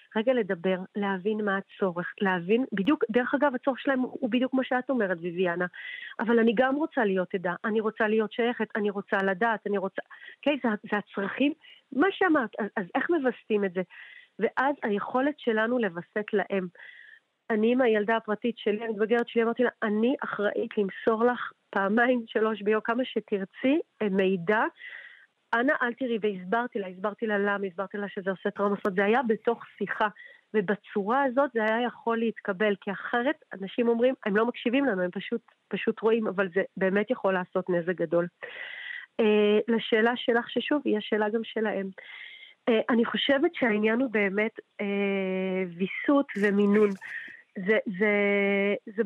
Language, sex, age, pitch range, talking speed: Hebrew, female, 40-59, 205-245 Hz, 160 wpm